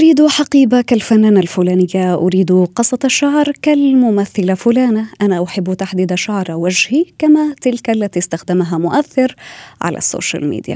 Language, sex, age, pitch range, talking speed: Arabic, female, 20-39, 185-260 Hz, 125 wpm